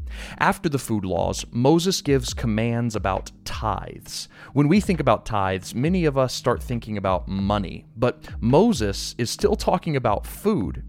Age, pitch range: 30-49, 110-155 Hz